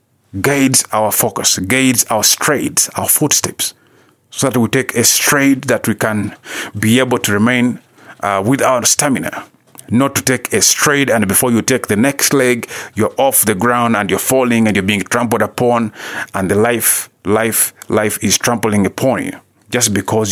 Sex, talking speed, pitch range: male, 175 wpm, 105-130 Hz